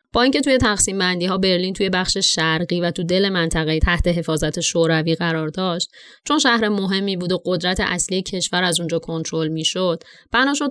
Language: Persian